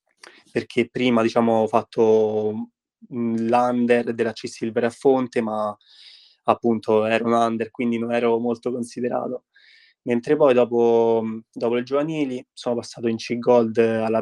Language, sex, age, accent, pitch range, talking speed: Italian, male, 20-39, native, 115-125 Hz, 140 wpm